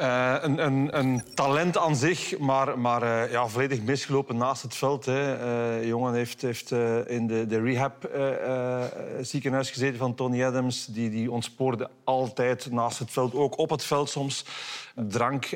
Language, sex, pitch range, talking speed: Dutch, male, 120-135 Hz, 175 wpm